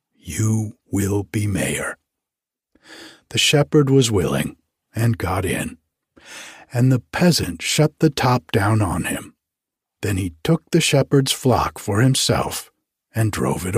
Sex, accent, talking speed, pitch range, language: male, American, 135 wpm, 100-135 Hz, English